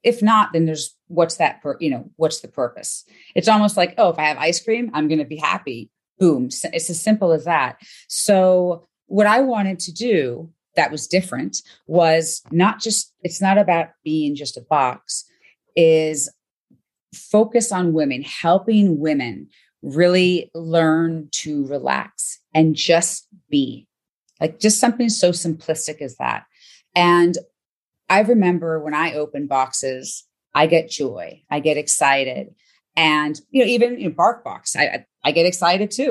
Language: English